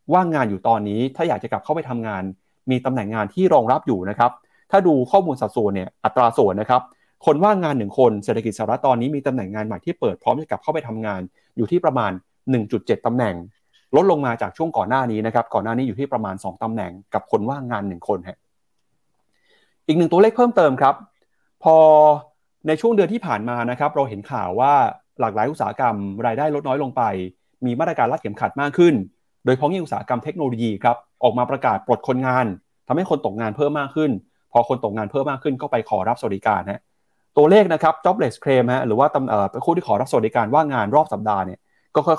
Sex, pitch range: male, 110-150 Hz